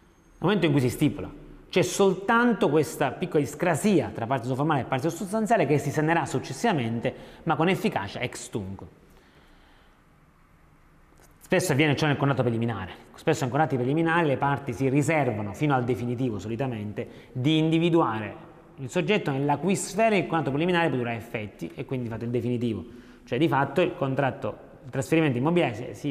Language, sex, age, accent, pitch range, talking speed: Italian, male, 30-49, native, 115-155 Hz, 165 wpm